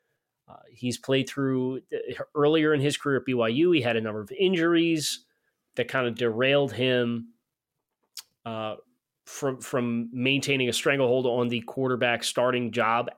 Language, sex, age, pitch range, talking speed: English, male, 30-49, 120-140 Hz, 145 wpm